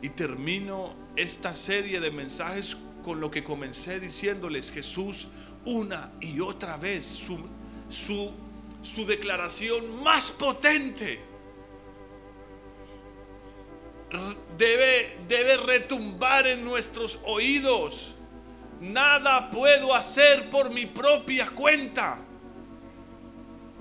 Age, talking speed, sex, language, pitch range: 40-59, 85 wpm, male, Spanish, 210-295 Hz